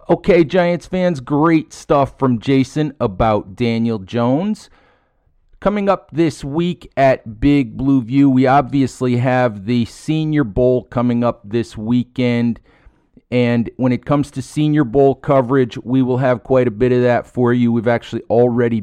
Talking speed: 155 wpm